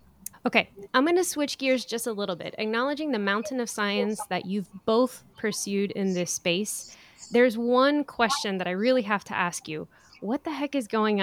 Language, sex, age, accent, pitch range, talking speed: English, female, 20-39, American, 175-230 Hz, 195 wpm